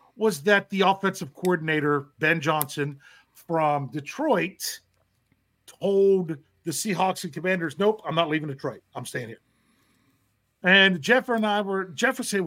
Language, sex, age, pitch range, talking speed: English, male, 40-59, 140-185 Hz, 145 wpm